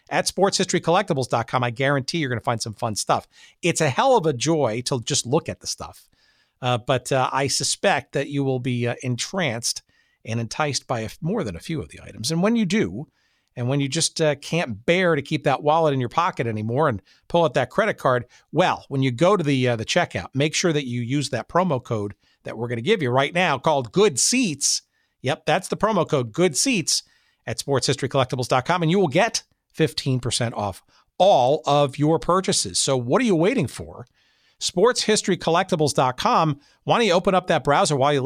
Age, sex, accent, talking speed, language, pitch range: 50-69, male, American, 210 wpm, English, 125-175 Hz